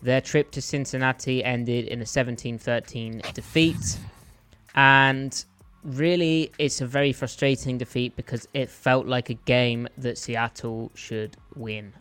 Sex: male